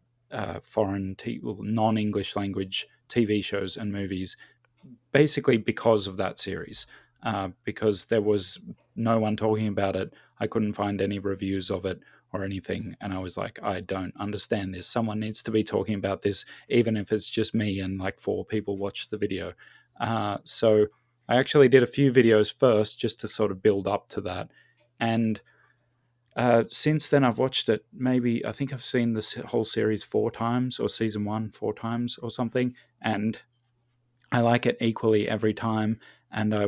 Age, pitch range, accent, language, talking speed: 20-39, 100-120 Hz, Australian, English, 175 wpm